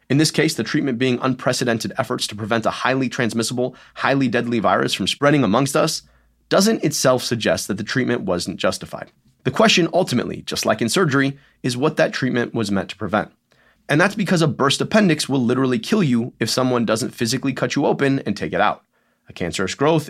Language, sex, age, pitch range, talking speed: English, male, 30-49, 115-155 Hz, 200 wpm